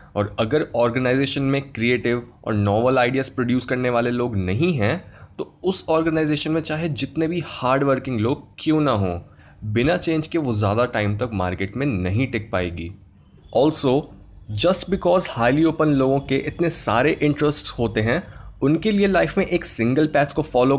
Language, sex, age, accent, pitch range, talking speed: Hindi, male, 20-39, native, 115-155 Hz, 175 wpm